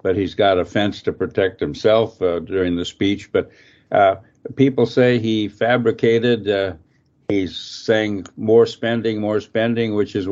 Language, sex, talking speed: English, male, 155 wpm